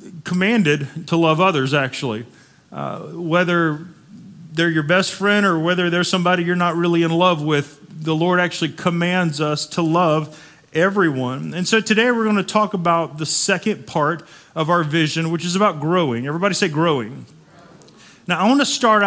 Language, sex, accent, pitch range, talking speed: English, male, American, 160-195 Hz, 175 wpm